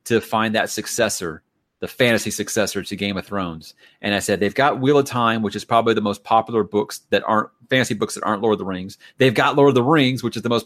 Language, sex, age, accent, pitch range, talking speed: English, male, 30-49, American, 100-140 Hz, 260 wpm